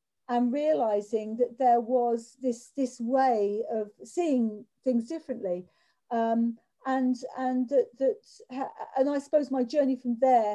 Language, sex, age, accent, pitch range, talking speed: English, female, 50-69, British, 210-255 Hz, 140 wpm